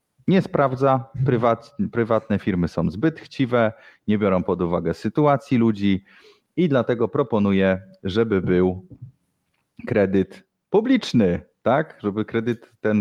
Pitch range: 95-120 Hz